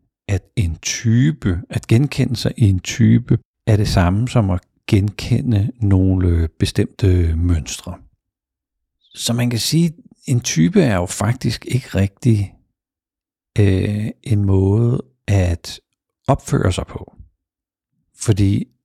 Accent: native